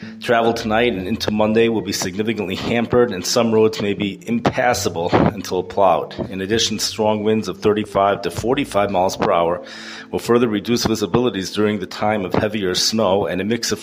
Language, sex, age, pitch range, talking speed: English, male, 30-49, 95-115 Hz, 180 wpm